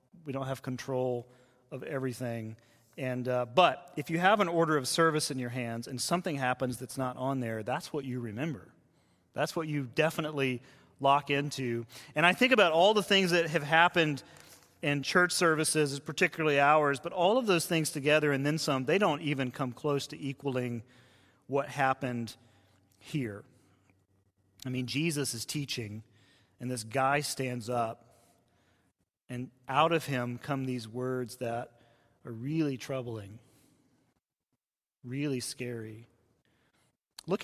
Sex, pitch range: male, 125-150 Hz